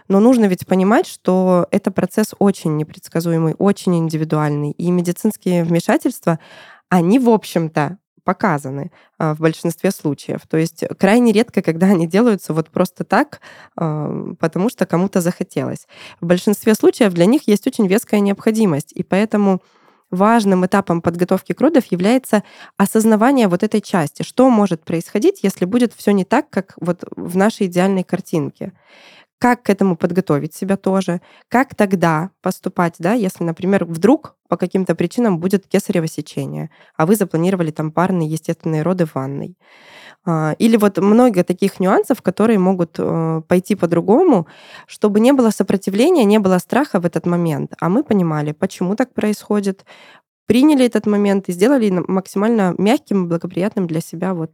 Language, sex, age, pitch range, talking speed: Russian, female, 20-39, 170-210 Hz, 145 wpm